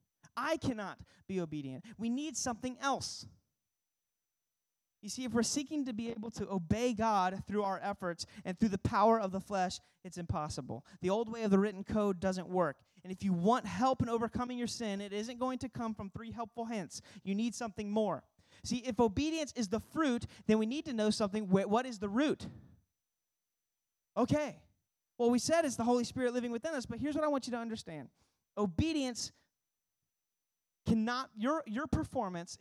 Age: 30-49